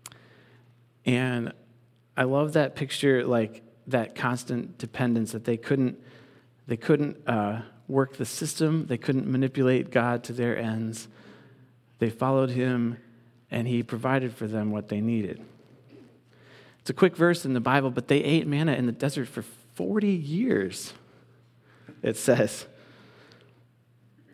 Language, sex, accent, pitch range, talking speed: English, male, American, 115-135 Hz, 135 wpm